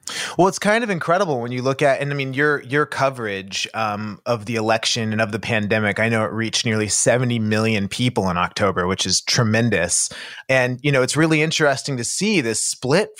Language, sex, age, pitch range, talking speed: English, male, 30-49, 110-135 Hz, 210 wpm